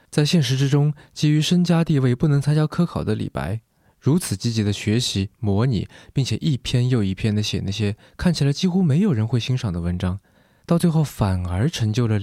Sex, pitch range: male, 100-140 Hz